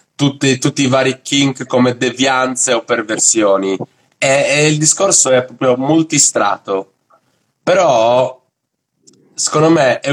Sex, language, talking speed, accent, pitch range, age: male, Italian, 120 wpm, native, 120-155 Hz, 30-49